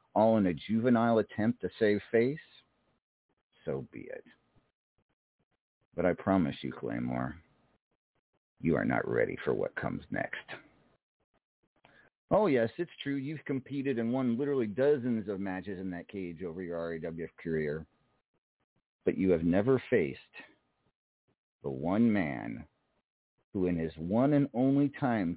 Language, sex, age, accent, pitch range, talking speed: English, male, 50-69, American, 90-120 Hz, 135 wpm